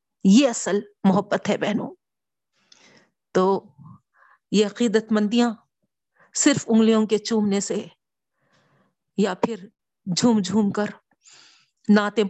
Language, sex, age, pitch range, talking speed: Urdu, female, 50-69, 205-270 Hz, 100 wpm